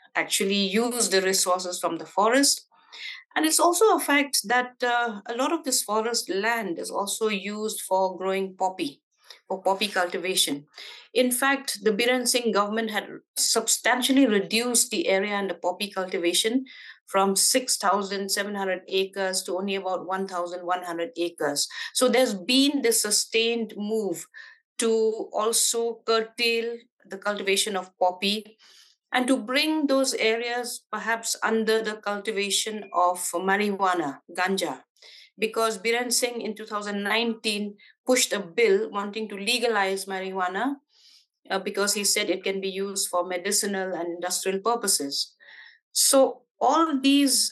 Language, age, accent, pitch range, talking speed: English, 50-69, Indian, 190-240 Hz, 135 wpm